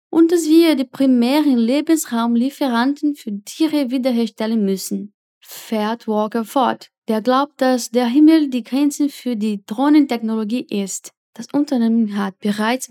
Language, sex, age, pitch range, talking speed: Portuguese, female, 10-29, 220-285 Hz, 130 wpm